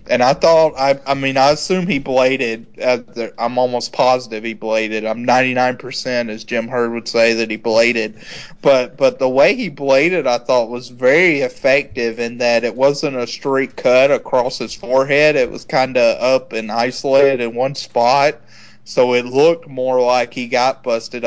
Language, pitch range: English, 115-135 Hz